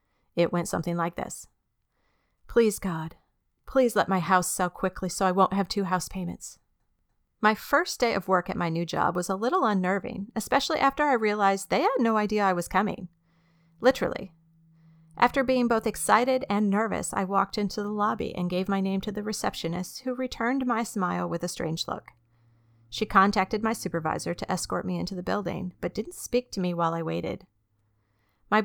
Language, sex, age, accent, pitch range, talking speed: English, female, 30-49, American, 175-225 Hz, 190 wpm